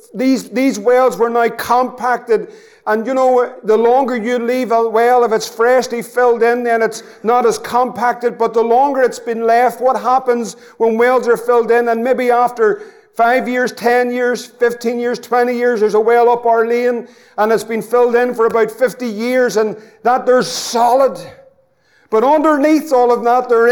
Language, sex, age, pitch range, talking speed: English, male, 50-69, 230-250 Hz, 185 wpm